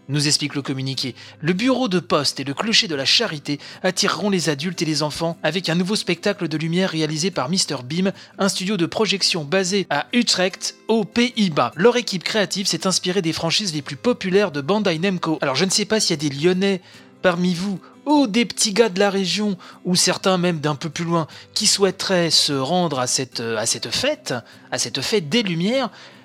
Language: French